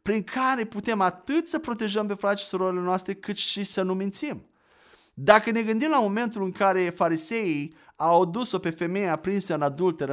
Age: 30-49